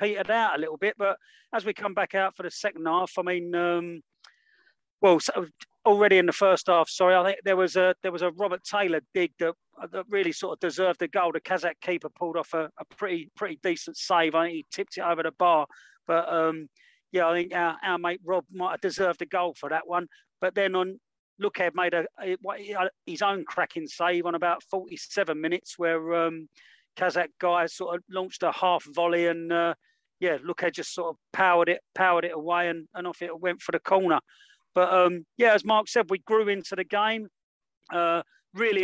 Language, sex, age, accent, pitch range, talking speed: English, male, 40-59, British, 170-190 Hz, 220 wpm